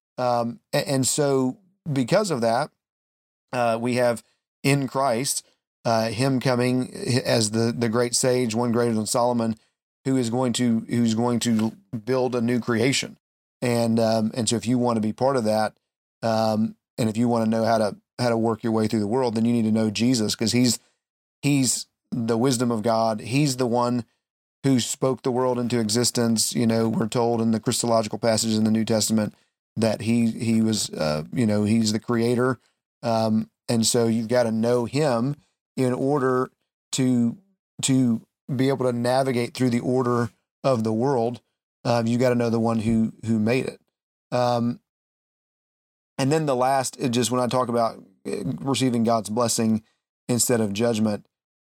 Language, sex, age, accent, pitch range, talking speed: English, male, 40-59, American, 115-125 Hz, 180 wpm